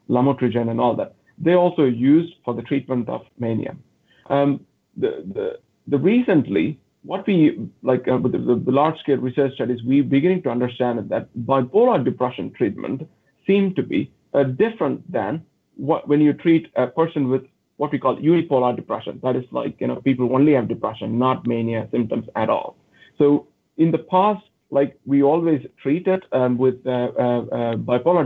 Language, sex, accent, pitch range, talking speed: English, male, Indian, 125-165 Hz, 175 wpm